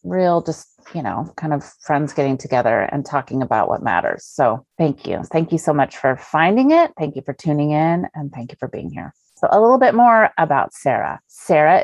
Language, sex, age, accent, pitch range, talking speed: English, female, 30-49, American, 140-180 Hz, 220 wpm